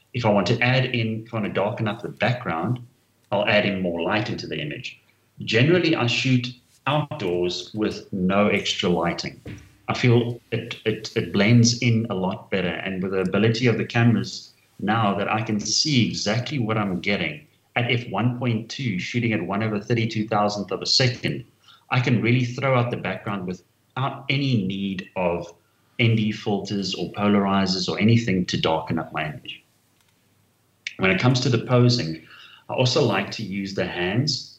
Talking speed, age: 170 wpm, 30-49